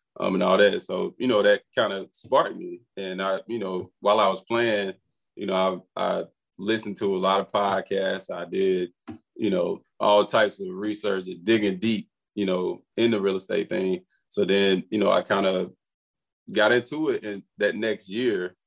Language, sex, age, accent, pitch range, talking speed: English, male, 20-39, American, 100-120 Hz, 200 wpm